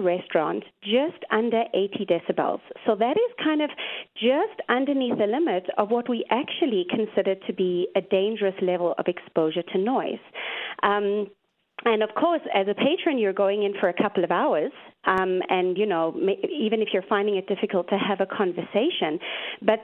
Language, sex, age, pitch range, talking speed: English, female, 30-49, 190-245 Hz, 175 wpm